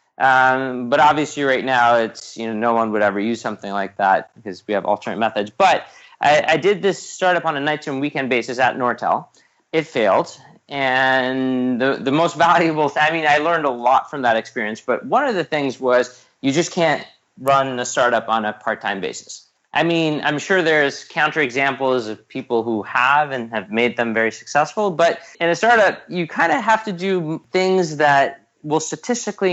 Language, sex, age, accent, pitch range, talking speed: English, male, 30-49, American, 120-165 Hz, 205 wpm